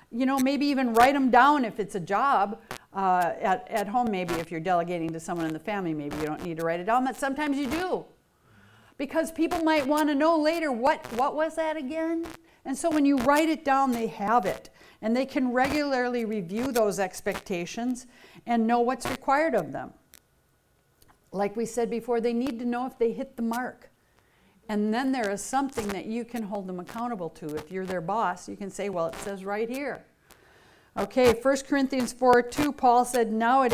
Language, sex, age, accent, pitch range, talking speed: English, female, 60-79, American, 200-265 Hz, 205 wpm